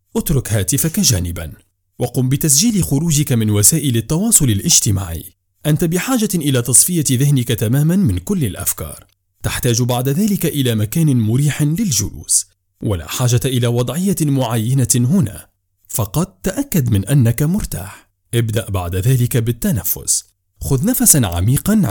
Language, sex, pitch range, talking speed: Arabic, male, 100-150 Hz, 120 wpm